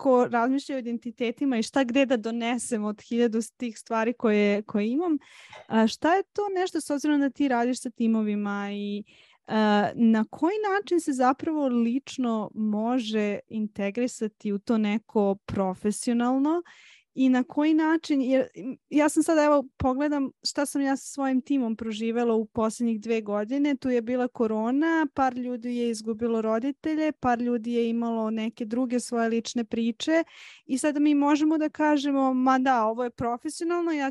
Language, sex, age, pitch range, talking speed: English, female, 20-39, 230-295 Hz, 160 wpm